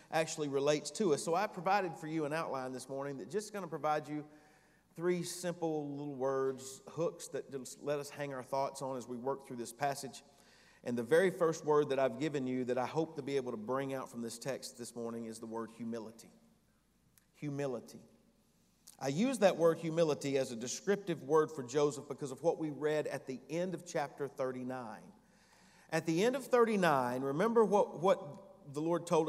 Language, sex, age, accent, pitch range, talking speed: English, male, 40-59, American, 135-175 Hz, 205 wpm